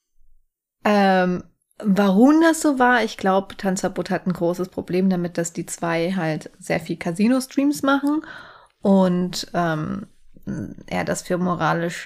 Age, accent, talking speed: 30-49, German, 135 wpm